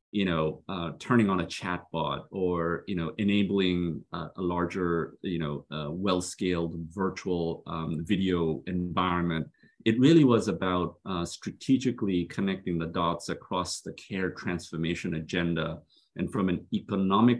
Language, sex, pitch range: English, male, 85-95 Hz